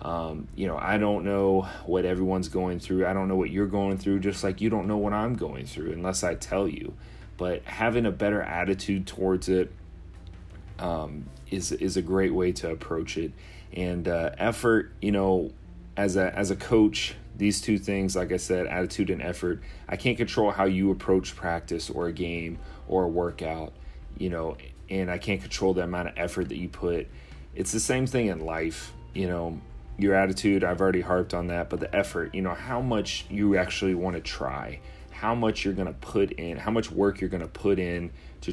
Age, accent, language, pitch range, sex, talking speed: 30-49, American, English, 85-100 Hz, male, 210 wpm